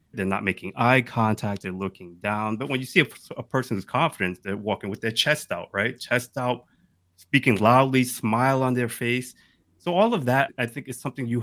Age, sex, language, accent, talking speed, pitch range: 20-39, male, English, American, 210 wpm, 95-125 Hz